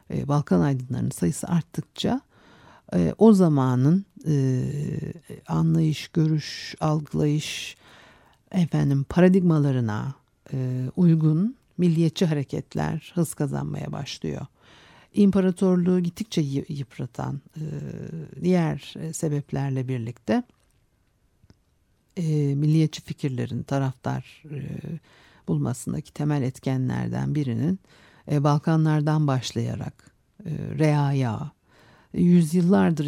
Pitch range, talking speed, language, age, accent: 135-170 Hz, 65 wpm, Turkish, 60-79, native